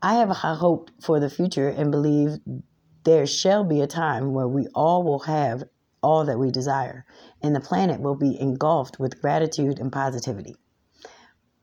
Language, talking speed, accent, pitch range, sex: English, 175 wpm, American, 135-160 Hz, female